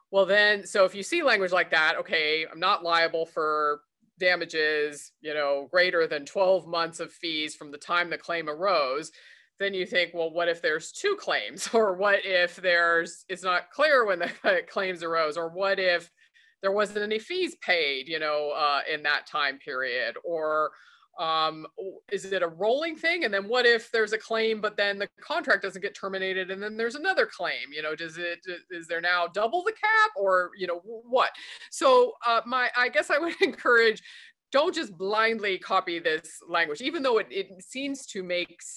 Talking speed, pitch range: 195 wpm, 170-230 Hz